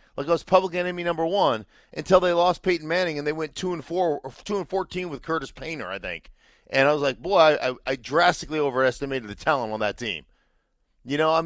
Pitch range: 120-160 Hz